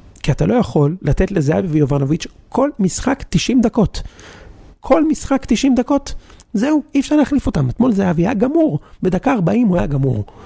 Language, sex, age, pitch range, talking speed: Hebrew, male, 40-59, 125-180 Hz, 165 wpm